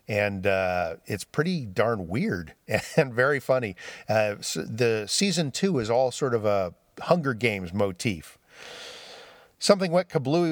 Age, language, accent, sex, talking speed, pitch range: 50-69, English, American, male, 145 wpm, 110-150 Hz